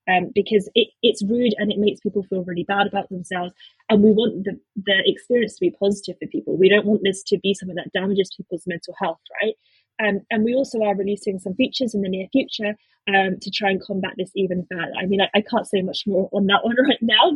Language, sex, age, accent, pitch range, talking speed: English, female, 20-39, British, 195-225 Hz, 245 wpm